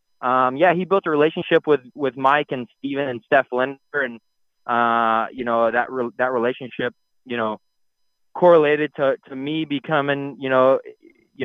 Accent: American